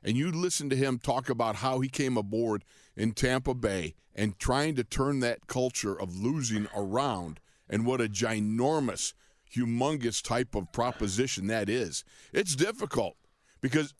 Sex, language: male, English